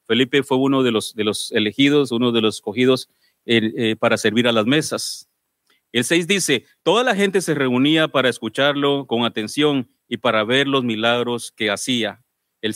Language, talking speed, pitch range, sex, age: English, 170 wpm, 120-150 Hz, male, 40-59